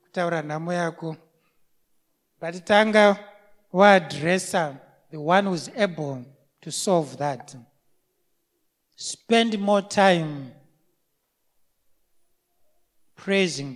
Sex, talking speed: male, 60 wpm